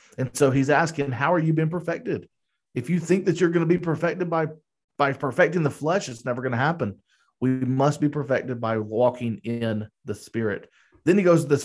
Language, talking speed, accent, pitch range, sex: English, 215 wpm, American, 135-170 Hz, male